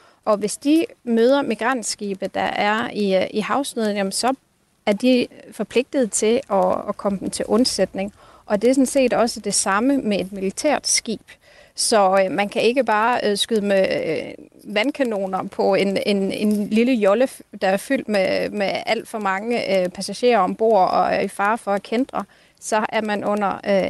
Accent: native